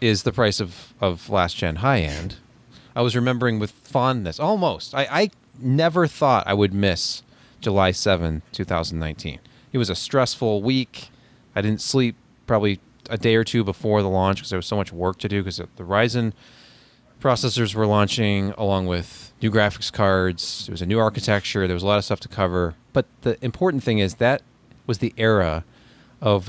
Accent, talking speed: American, 185 wpm